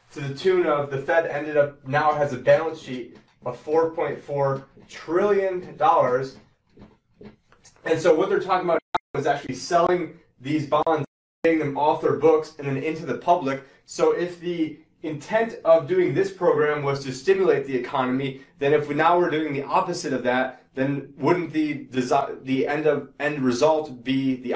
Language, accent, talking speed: English, American, 175 wpm